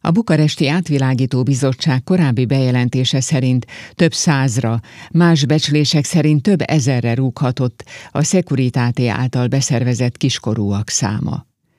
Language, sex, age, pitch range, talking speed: Hungarian, female, 50-69, 120-155 Hz, 105 wpm